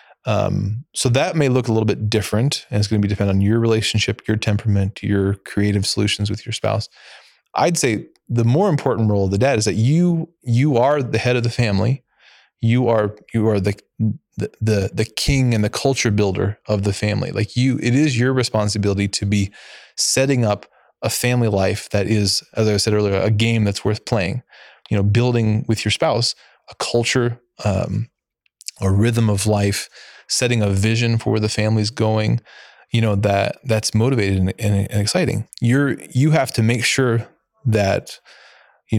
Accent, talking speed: American, 190 wpm